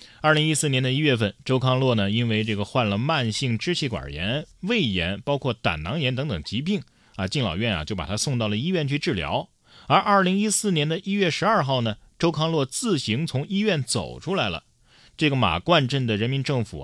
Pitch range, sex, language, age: 110-160 Hz, male, Chinese, 30-49